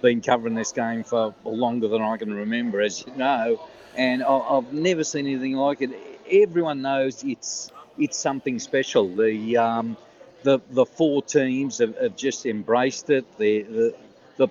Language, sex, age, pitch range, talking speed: English, male, 50-69, 120-145 Hz, 165 wpm